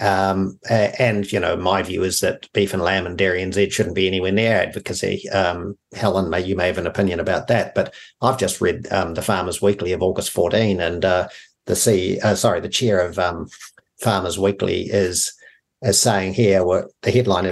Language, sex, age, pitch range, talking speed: English, male, 50-69, 95-115 Hz, 205 wpm